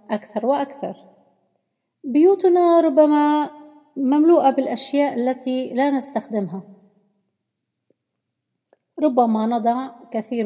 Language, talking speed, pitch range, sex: Arabic, 70 wpm, 220-280 Hz, female